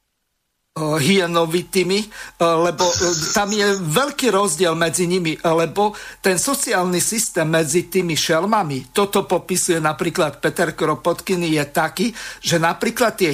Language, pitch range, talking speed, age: Slovak, 160-190 Hz, 115 wpm, 50-69